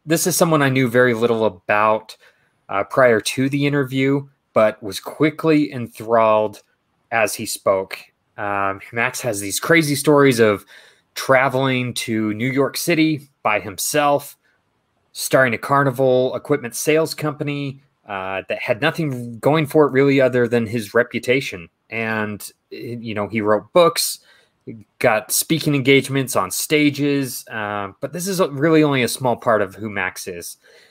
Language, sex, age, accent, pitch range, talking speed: English, male, 20-39, American, 110-145 Hz, 150 wpm